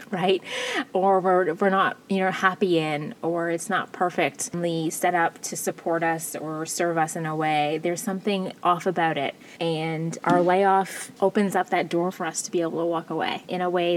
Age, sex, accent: 20-39, female, American